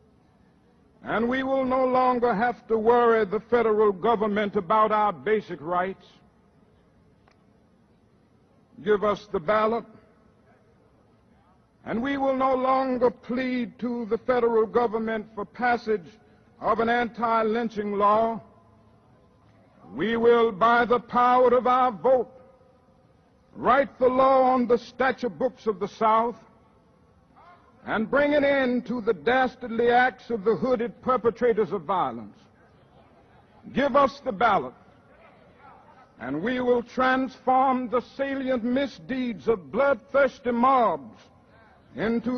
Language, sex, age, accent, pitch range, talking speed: English, male, 60-79, American, 220-255 Hz, 115 wpm